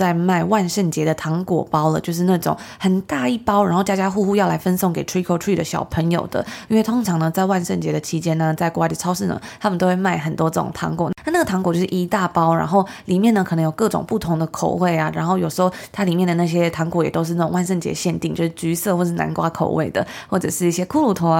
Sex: female